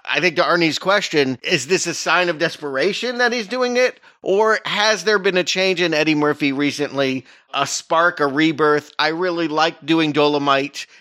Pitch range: 130-175 Hz